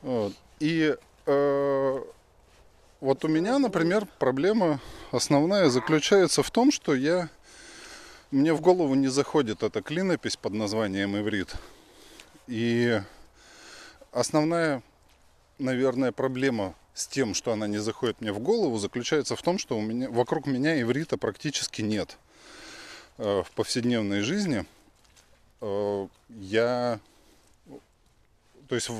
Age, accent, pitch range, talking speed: 20-39, native, 105-140 Hz, 110 wpm